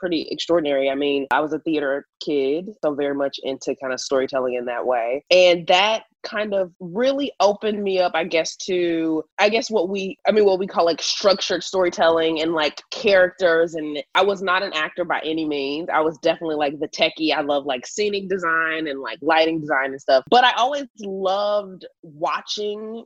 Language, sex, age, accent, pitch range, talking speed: English, female, 20-39, American, 145-190 Hz, 200 wpm